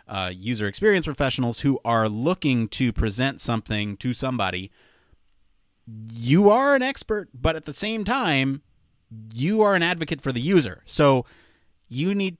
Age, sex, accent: 30-49, male, American